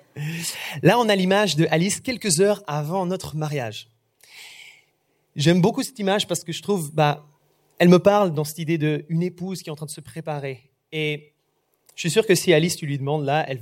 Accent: French